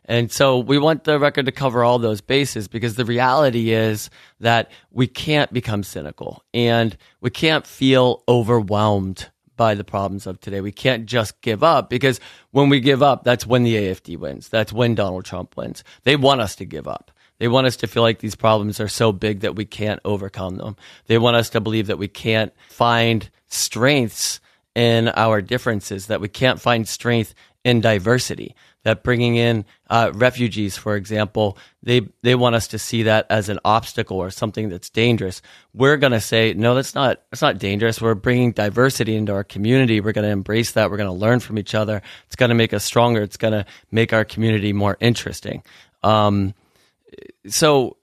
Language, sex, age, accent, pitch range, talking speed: English, male, 30-49, American, 105-125 Hz, 195 wpm